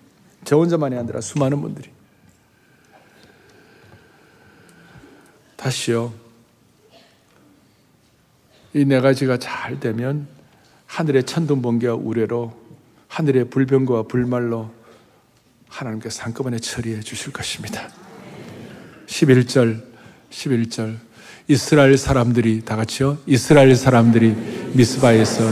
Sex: male